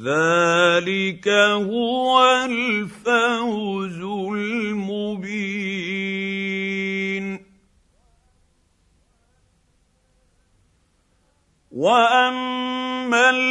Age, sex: 50-69, male